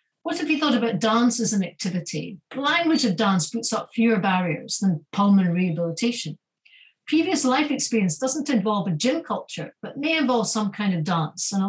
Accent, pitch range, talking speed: British, 180-245 Hz, 190 wpm